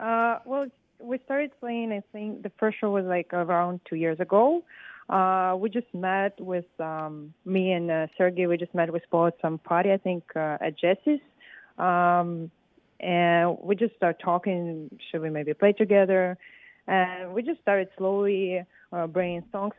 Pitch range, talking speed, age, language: 170-205 Hz, 175 wpm, 20-39, English